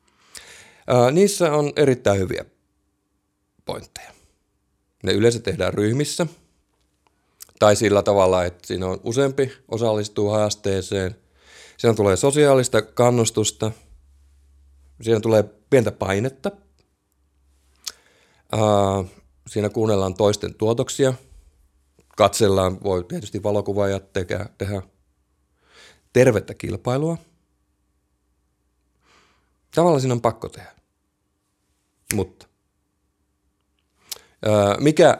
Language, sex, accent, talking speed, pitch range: Finnish, male, native, 80 wpm, 75-115 Hz